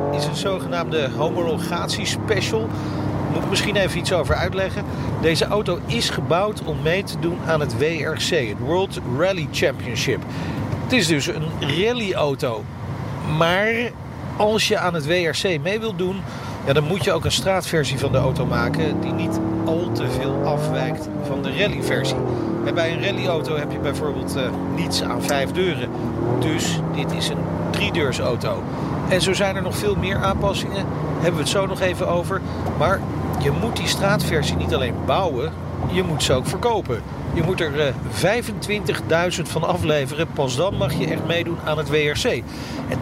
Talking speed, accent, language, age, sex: 170 wpm, Dutch, Dutch, 50-69, male